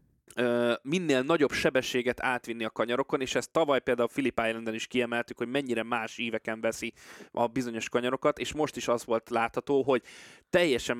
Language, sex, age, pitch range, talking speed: Hungarian, male, 20-39, 115-140 Hz, 165 wpm